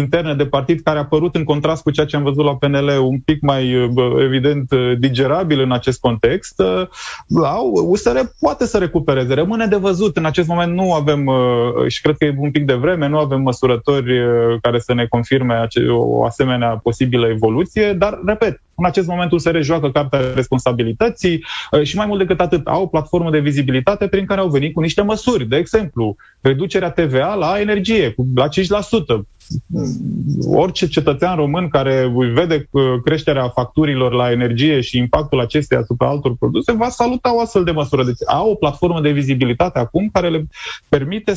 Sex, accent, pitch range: male, native, 130-175 Hz